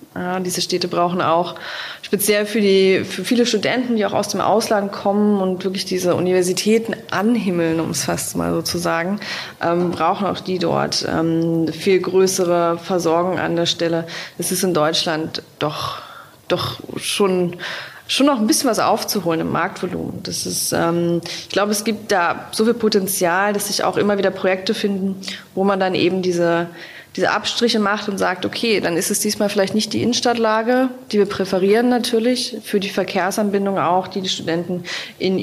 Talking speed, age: 175 wpm, 20-39